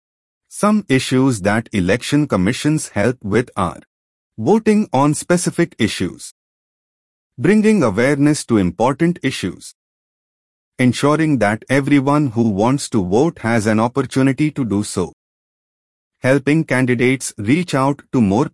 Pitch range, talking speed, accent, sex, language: 110-145 Hz, 115 wpm, Indian, male, English